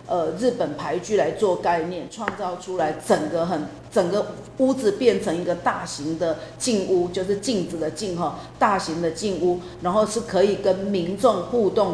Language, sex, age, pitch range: Chinese, female, 50-69, 175-220 Hz